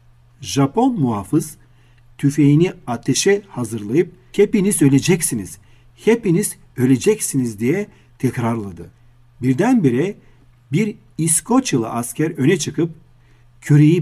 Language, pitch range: Turkish, 120-160 Hz